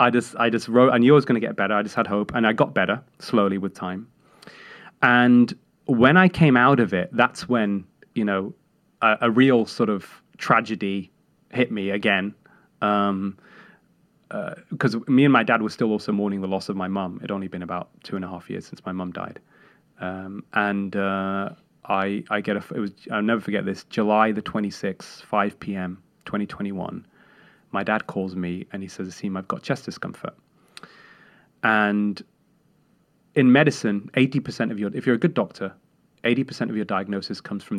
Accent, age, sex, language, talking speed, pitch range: British, 30-49, male, English, 195 wpm, 100-120 Hz